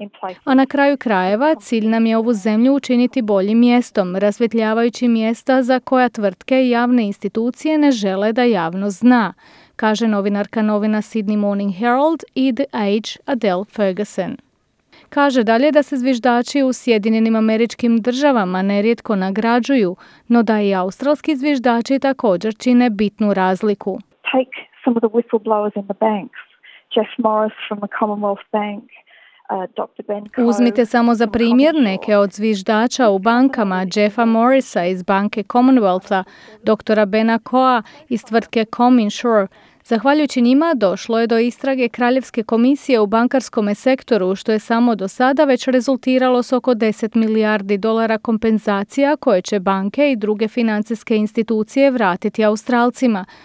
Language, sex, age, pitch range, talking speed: English, female, 30-49, 210-250 Hz, 140 wpm